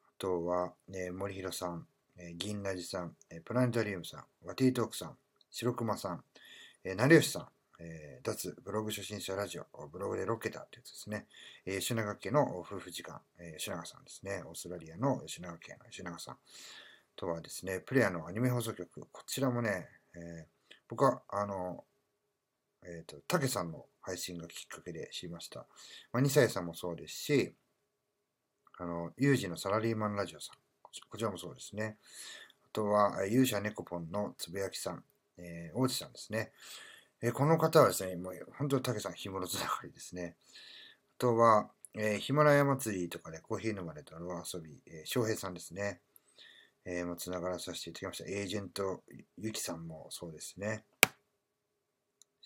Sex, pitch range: male, 90-115 Hz